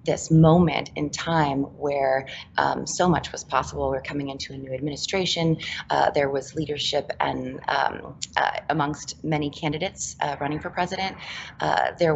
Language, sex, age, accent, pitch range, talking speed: English, female, 20-39, American, 145-165 Hz, 160 wpm